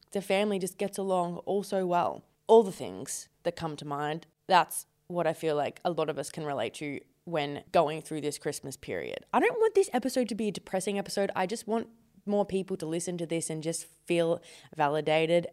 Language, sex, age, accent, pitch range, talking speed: English, female, 20-39, Australian, 165-205 Hz, 215 wpm